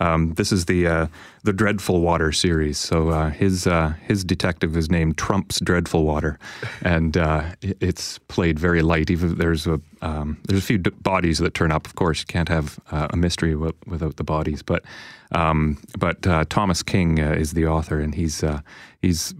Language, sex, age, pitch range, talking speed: English, male, 30-49, 80-90 Hz, 200 wpm